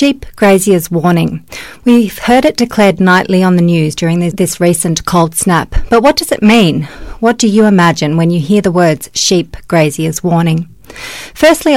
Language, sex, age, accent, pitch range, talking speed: English, female, 40-59, Australian, 170-215 Hz, 175 wpm